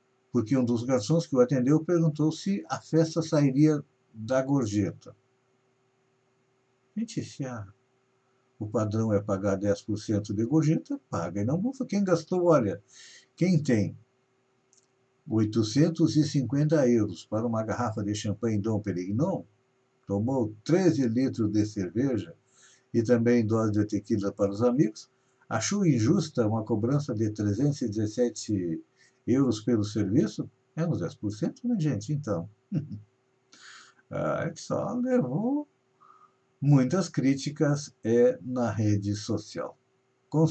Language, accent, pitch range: Portuguese, Brazilian, 110-150 Hz